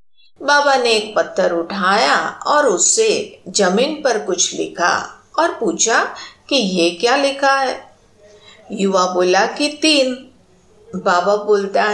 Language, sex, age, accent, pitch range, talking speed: Hindi, female, 50-69, native, 200-315 Hz, 120 wpm